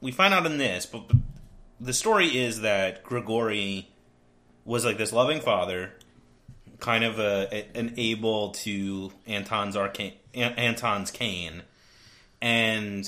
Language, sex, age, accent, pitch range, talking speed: English, male, 30-49, American, 100-125 Hz, 135 wpm